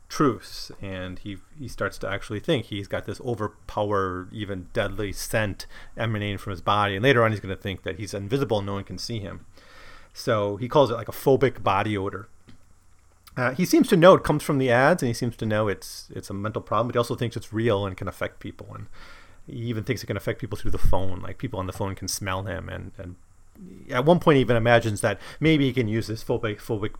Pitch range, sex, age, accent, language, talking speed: 95-120 Hz, male, 30-49, American, English, 240 wpm